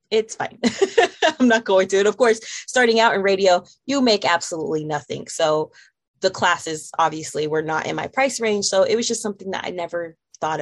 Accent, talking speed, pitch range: American, 205 wpm, 165-205 Hz